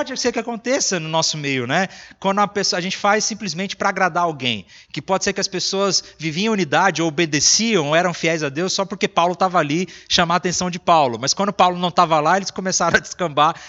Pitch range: 150-210 Hz